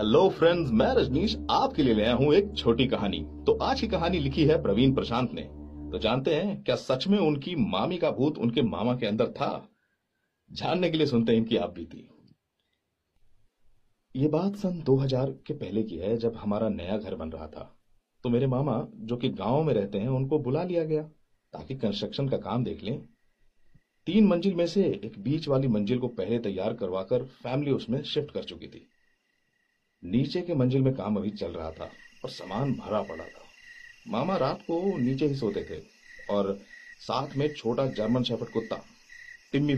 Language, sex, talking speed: Hindi, male, 185 wpm